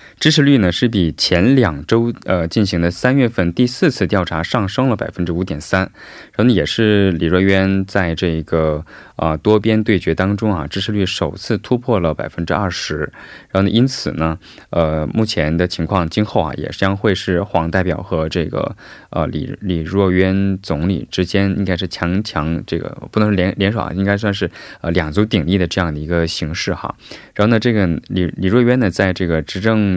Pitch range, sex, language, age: 85-105 Hz, male, Korean, 20-39